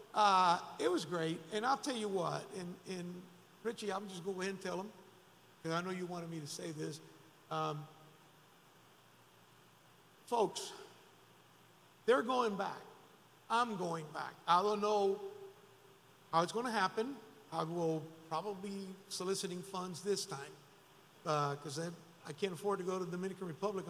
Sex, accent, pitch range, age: male, American, 165-205 Hz, 50-69